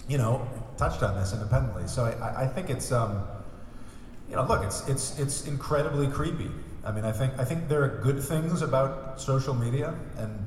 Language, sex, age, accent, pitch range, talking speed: English, male, 40-59, American, 105-130 Hz, 195 wpm